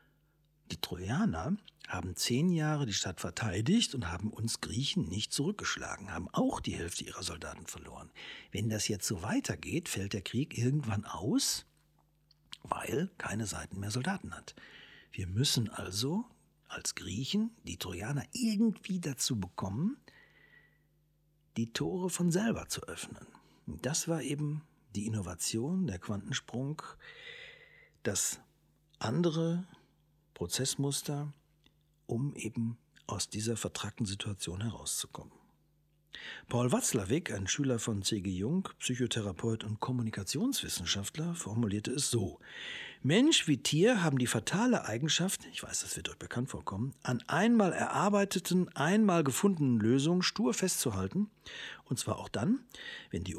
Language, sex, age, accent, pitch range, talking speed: German, male, 60-79, German, 110-170 Hz, 125 wpm